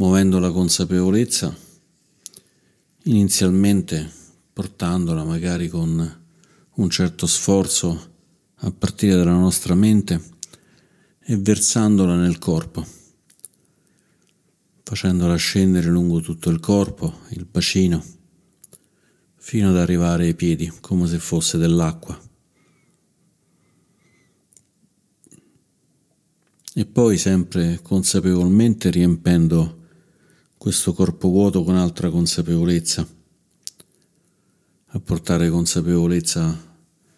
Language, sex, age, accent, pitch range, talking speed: Italian, male, 50-69, native, 85-100 Hz, 80 wpm